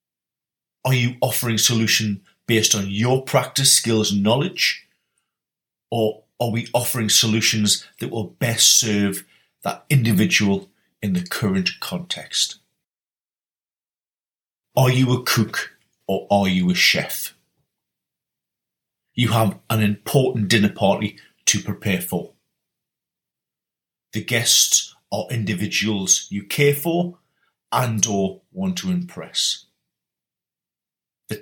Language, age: English, 40-59